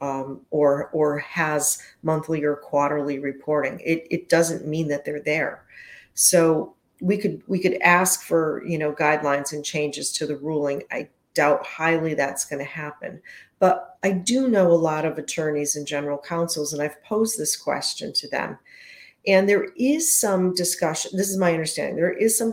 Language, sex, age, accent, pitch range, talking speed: English, female, 40-59, American, 145-170 Hz, 180 wpm